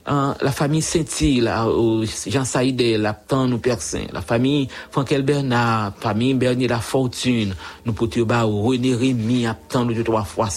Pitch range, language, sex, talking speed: 105-140 Hz, English, male, 170 wpm